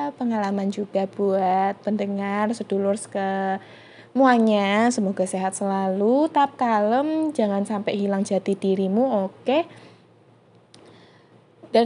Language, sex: Indonesian, female